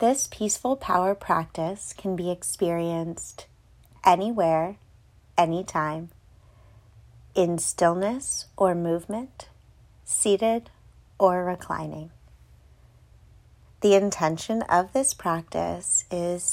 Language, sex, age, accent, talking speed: English, female, 30-49, American, 80 wpm